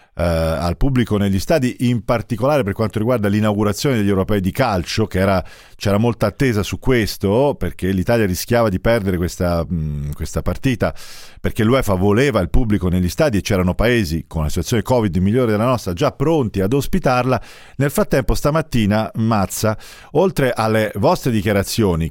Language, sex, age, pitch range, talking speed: Italian, male, 40-59, 95-125 Hz, 155 wpm